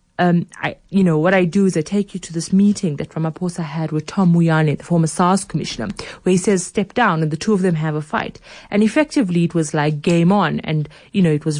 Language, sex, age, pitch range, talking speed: English, female, 30-49, 160-205 Hz, 255 wpm